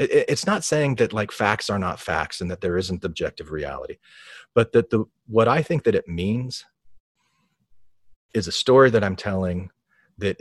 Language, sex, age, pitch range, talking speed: English, male, 40-59, 95-120 Hz, 180 wpm